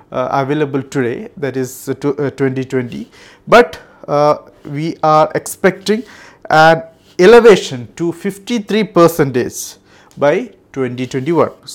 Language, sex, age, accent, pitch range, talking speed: Malayalam, male, 50-69, native, 135-175 Hz, 100 wpm